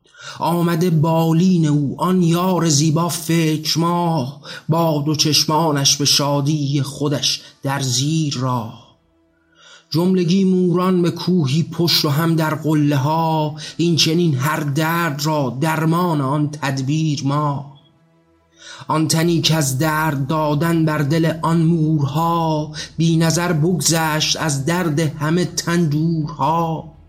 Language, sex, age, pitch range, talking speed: Persian, male, 30-49, 145-165 Hz, 110 wpm